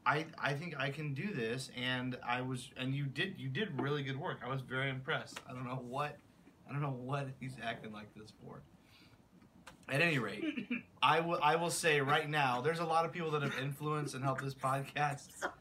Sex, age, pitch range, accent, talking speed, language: male, 20-39, 115-150 Hz, American, 220 wpm, English